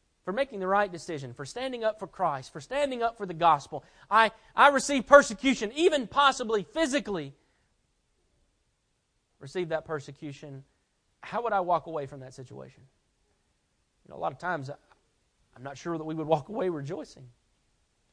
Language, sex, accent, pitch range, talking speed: English, male, American, 140-185 Hz, 165 wpm